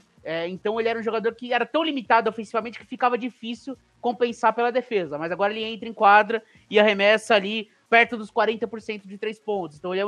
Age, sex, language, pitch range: 20-39, male, English, 180-235 Hz